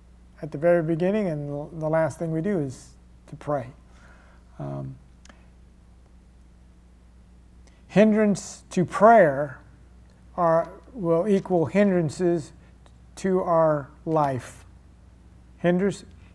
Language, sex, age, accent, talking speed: English, male, 50-69, American, 90 wpm